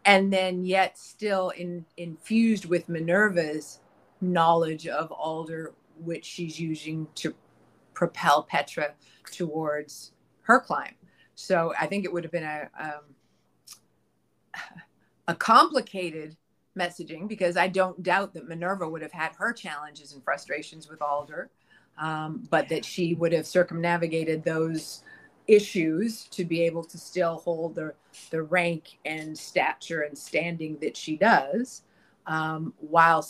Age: 30-49